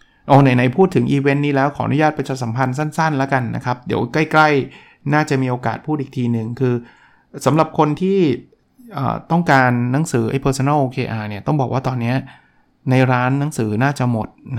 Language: Thai